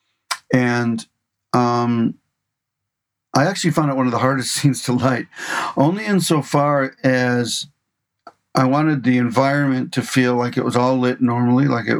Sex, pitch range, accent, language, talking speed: male, 120-140 Hz, American, English, 150 wpm